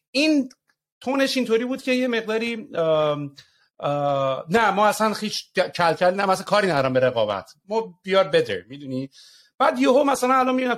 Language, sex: English, male